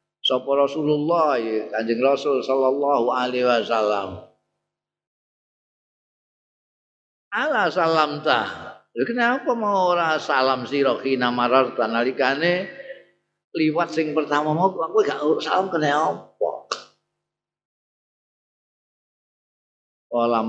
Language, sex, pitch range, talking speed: Indonesian, male, 125-170 Hz, 80 wpm